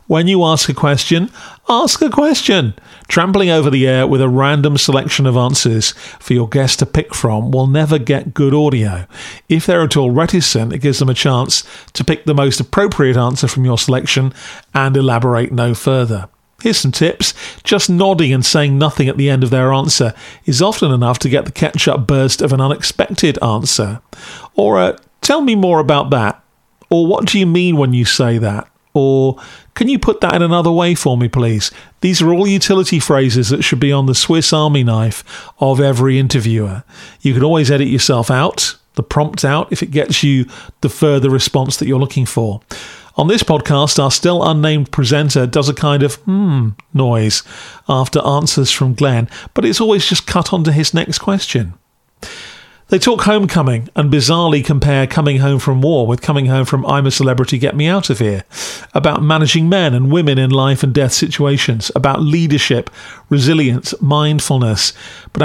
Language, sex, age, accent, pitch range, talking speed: English, male, 40-59, British, 130-160 Hz, 185 wpm